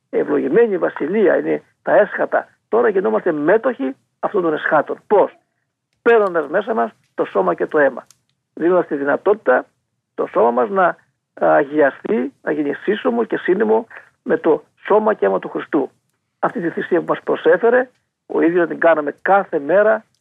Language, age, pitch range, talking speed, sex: Greek, 50-69, 155-225 Hz, 155 wpm, male